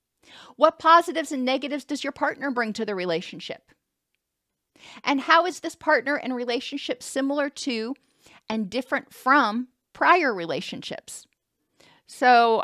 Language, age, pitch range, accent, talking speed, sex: English, 40-59, 215-285 Hz, American, 125 wpm, female